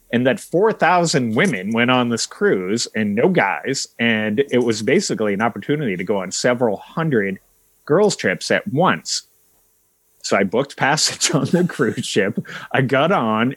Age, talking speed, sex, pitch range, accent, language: 30-49, 165 wpm, male, 110-145 Hz, American, English